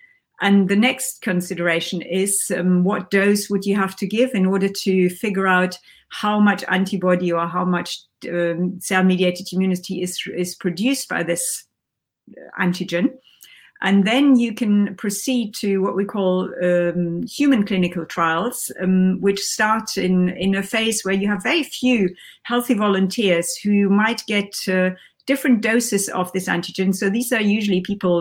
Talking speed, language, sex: 160 wpm, Hungarian, female